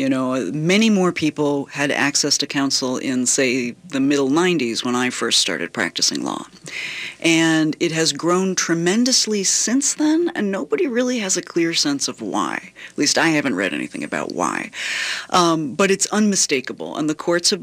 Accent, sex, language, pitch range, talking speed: American, female, English, 140-185 Hz, 175 wpm